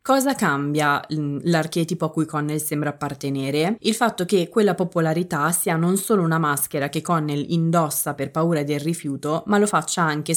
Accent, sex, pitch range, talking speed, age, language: native, female, 150-185 Hz, 170 wpm, 20-39, Italian